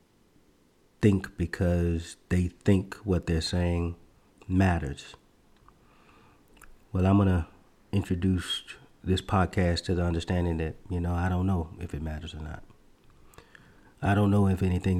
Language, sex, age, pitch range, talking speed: English, male, 30-49, 85-95 Hz, 135 wpm